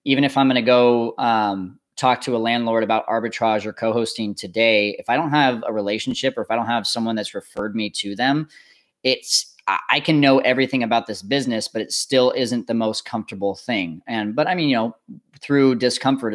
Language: English